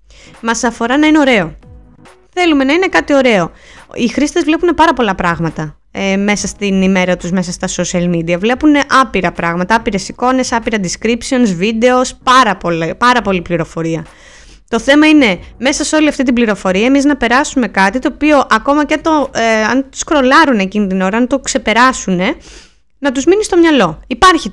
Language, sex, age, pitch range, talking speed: Greek, female, 20-39, 195-265 Hz, 180 wpm